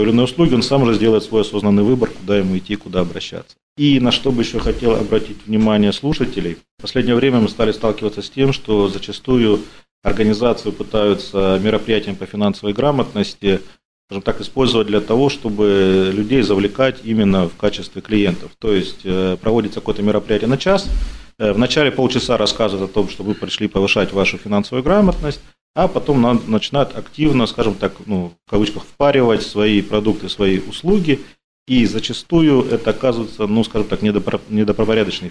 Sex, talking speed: male, 155 wpm